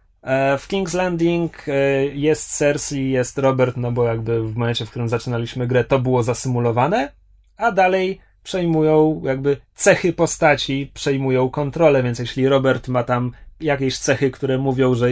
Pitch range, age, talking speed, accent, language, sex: 120-160 Hz, 20-39, 145 wpm, native, Polish, male